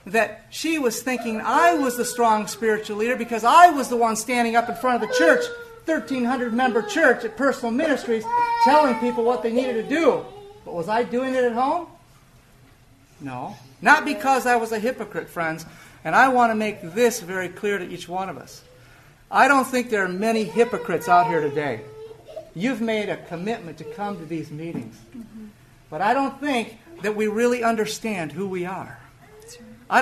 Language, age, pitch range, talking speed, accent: English, 50-69, 160-240 Hz, 185 wpm, American